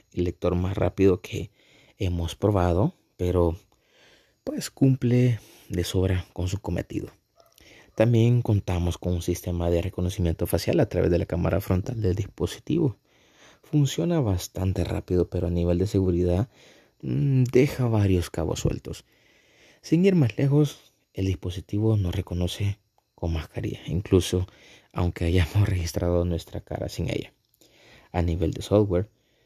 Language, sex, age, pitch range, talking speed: Spanish, male, 30-49, 90-105 Hz, 130 wpm